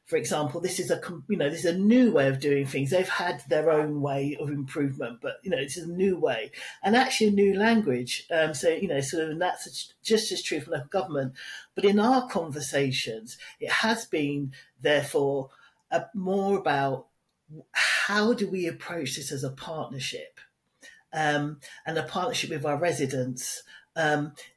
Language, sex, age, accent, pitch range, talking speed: English, male, 40-59, British, 145-200 Hz, 180 wpm